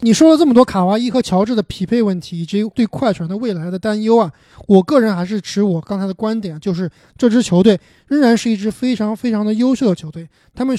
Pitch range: 180-240 Hz